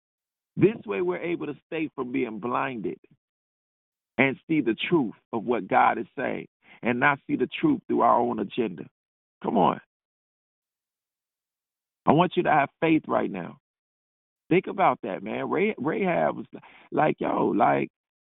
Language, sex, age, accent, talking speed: English, male, 40-59, American, 155 wpm